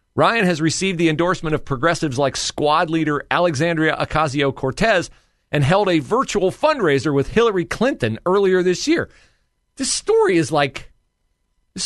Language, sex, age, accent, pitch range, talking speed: English, male, 40-59, American, 125-180 Hz, 140 wpm